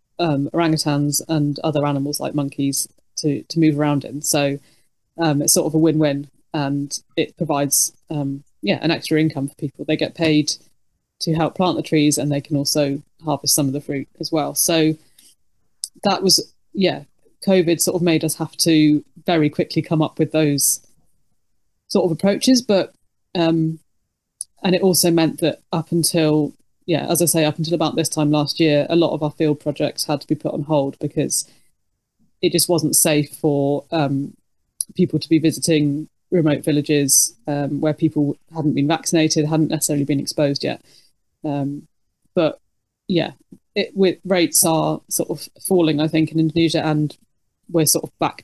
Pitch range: 145-165 Hz